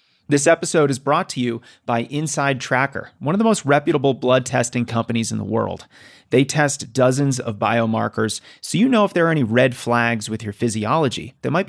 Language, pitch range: English, 115-140 Hz